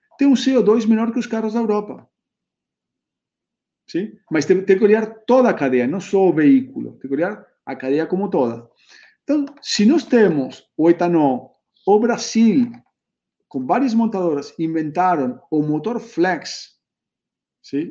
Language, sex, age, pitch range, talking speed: Portuguese, male, 40-59, 150-220 Hz, 145 wpm